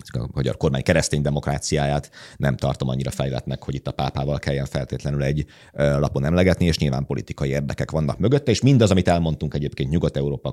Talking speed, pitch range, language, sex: 170 wpm, 70-80 Hz, Hungarian, male